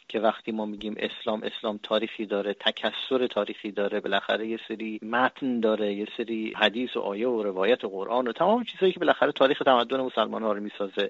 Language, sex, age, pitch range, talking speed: Persian, male, 40-59, 115-170 Hz, 195 wpm